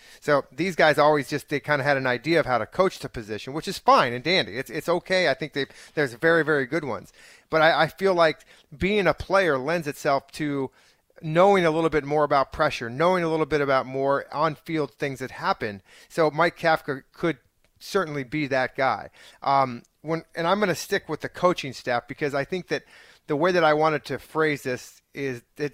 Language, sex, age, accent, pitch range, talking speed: English, male, 40-59, American, 130-160 Hz, 220 wpm